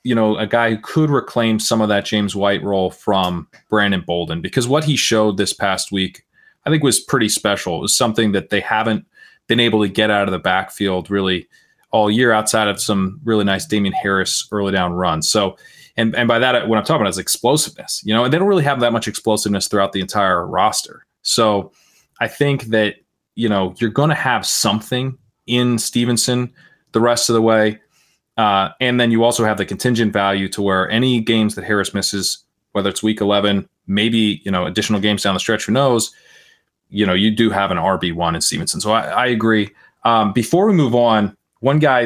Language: English